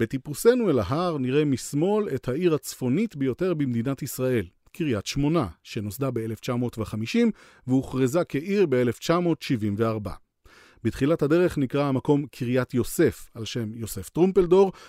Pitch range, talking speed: 115-155 Hz, 115 wpm